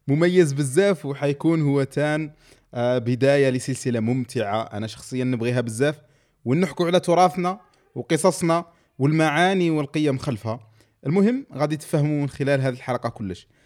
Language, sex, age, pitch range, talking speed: Arabic, male, 20-39, 130-160 Hz, 120 wpm